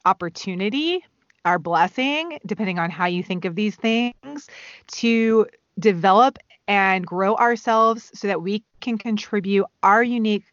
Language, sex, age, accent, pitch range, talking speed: English, female, 30-49, American, 190-235 Hz, 130 wpm